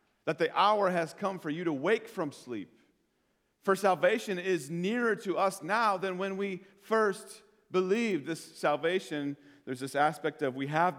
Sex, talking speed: male, 170 wpm